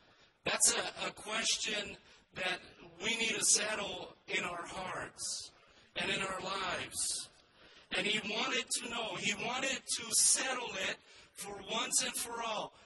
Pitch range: 215-255 Hz